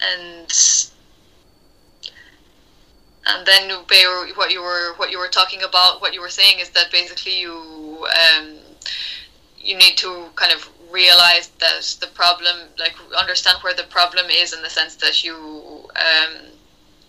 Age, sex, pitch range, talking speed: 10-29, female, 165-190 Hz, 145 wpm